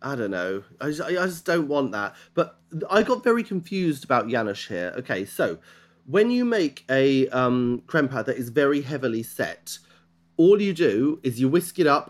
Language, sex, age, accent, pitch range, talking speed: English, male, 30-49, British, 120-185 Hz, 195 wpm